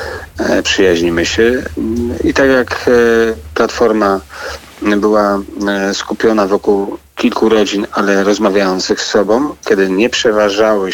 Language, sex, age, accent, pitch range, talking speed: Polish, male, 40-59, native, 95-110 Hz, 100 wpm